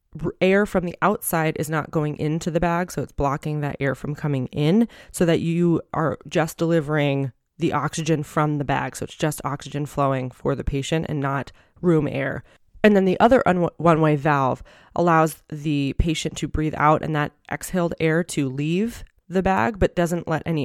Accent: American